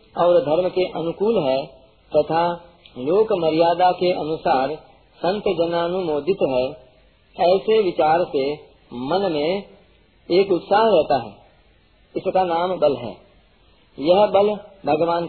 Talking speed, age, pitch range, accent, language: 120 wpm, 40-59, 155-195 Hz, native, Hindi